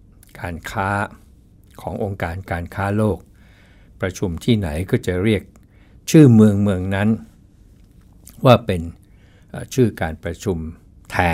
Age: 60-79